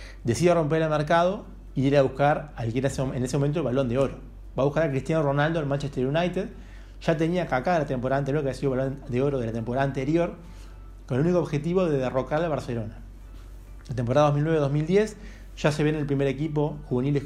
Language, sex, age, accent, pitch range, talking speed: Spanish, male, 30-49, Argentinian, 120-155 Hz, 220 wpm